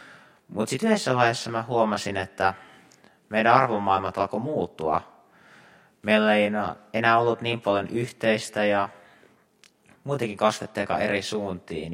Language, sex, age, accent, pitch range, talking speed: Finnish, male, 30-49, native, 95-115 Hz, 110 wpm